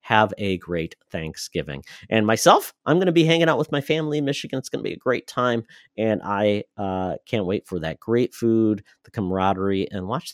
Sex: male